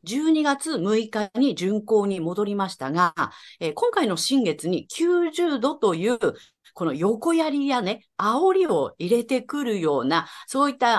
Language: Japanese